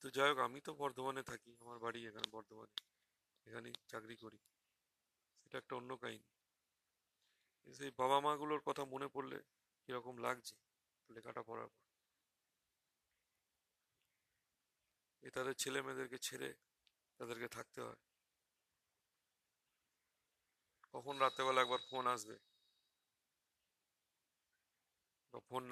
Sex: male